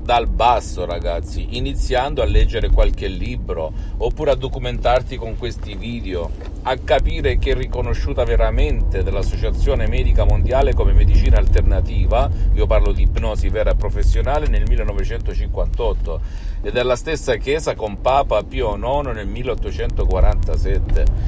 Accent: native